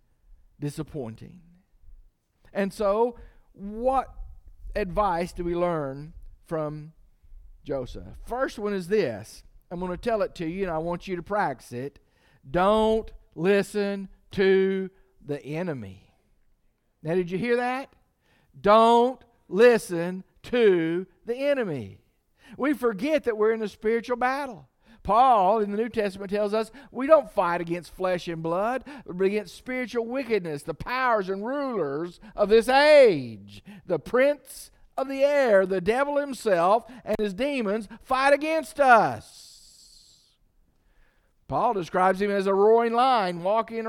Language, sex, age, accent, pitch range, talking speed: English, male, 50-69, American, 170-235 Hz, 135 wpm